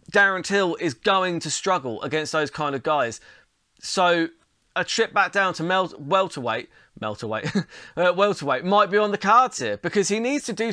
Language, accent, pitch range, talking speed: English, British, 165-215 Hz, 180 wpm